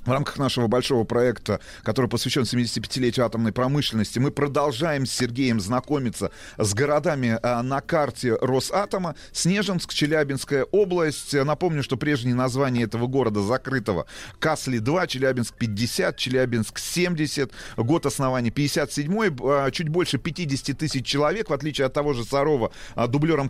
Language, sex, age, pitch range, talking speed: Russian, male, 30-49, 120-150 Hz, 130 wpm